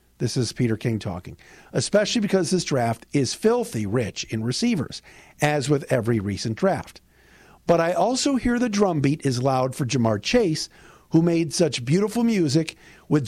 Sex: male